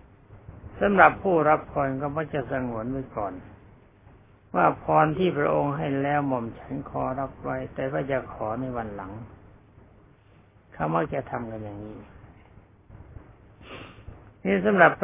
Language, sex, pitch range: Thai, male, 105-135 Hz